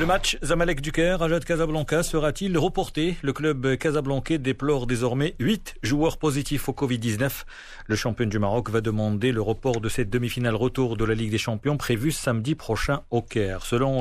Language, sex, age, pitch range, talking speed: Arabic, male, 40-59, 115-155 Hz, 175 wpm